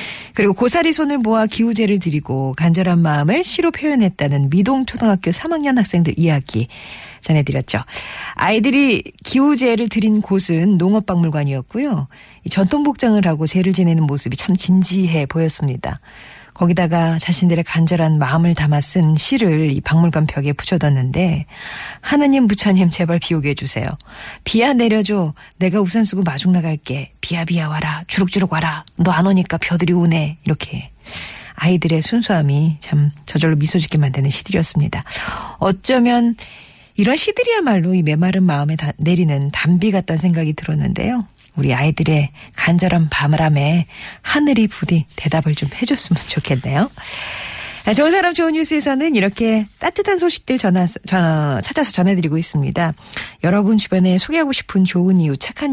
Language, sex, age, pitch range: Korean, female, 40-59, 155-210 Hz